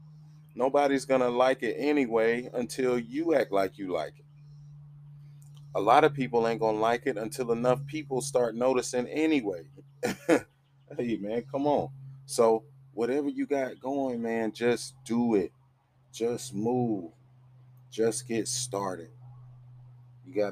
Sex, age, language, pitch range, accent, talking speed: male, 30-49, English, 105-125 Hz, American, 140 wpm